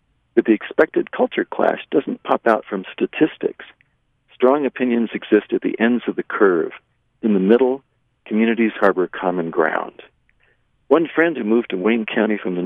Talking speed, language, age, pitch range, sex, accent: 165 wpm, English, 50-69, 100-125 Hz, male, American